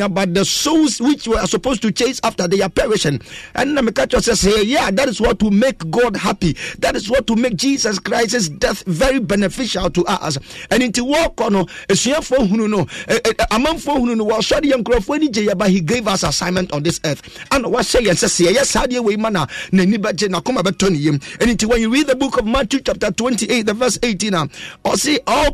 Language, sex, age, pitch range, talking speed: English, male, 50-69, 195-265 Hz, 220 wpm